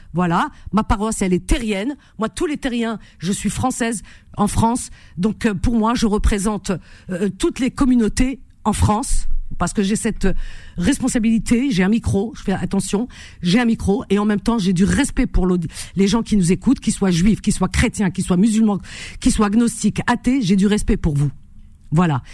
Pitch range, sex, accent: 170-230 Hz, female, French